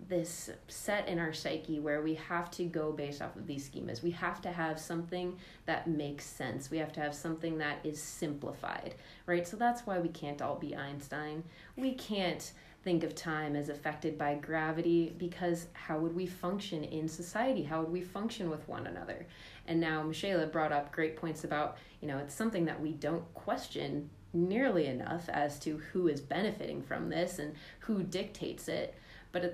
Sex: female